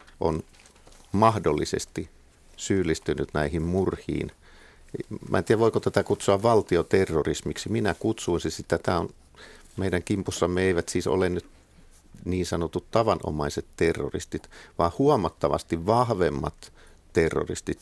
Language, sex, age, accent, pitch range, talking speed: Finnish, male, 50-69, native, 80-105 Hz, 100 wpm